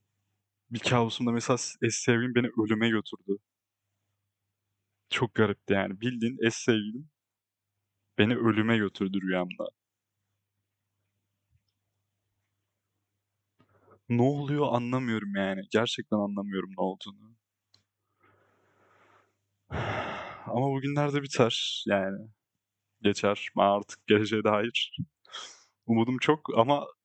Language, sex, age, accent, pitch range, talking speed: Turkish, male, 30-49, native, 100-120 Hz, 85 wpm